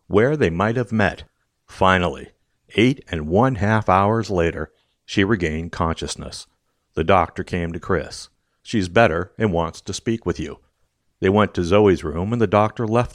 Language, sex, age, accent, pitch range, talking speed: English, male, 60-79, American, 85-120 Hz, 170 wpm